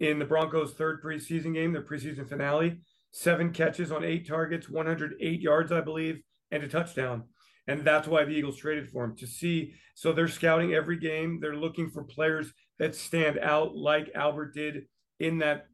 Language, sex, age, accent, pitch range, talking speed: English, male, 40-59, American, 150-170 Hz, 185 wpm